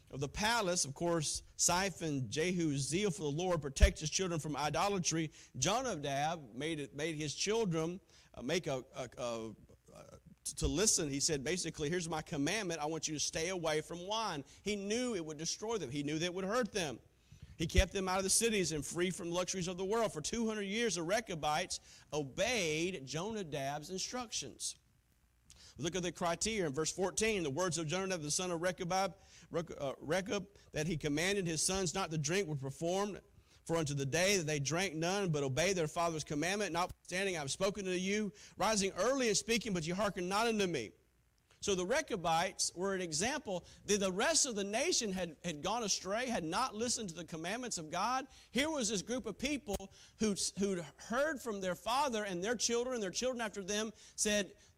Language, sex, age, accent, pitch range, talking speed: English, male, 40-59, American, 160-210 Hz, 200 wpm